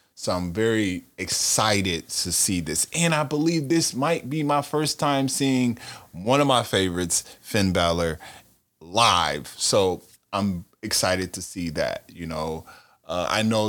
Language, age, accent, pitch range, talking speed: English, 20-39, American, 85-110 Hz, 155 wpm